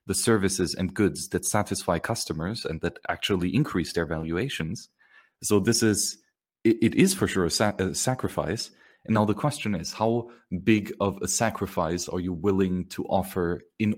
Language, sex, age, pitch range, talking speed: English, male, 30-49, 90-105 Hz, 170 wpm